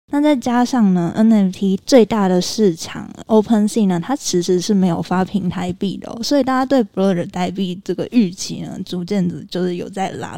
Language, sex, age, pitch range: Chinese, female, 20-39, 180-220 Hz